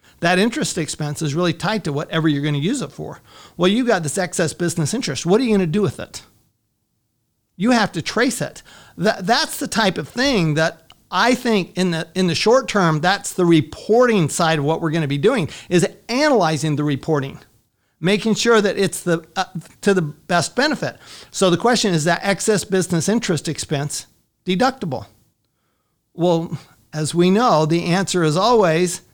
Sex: male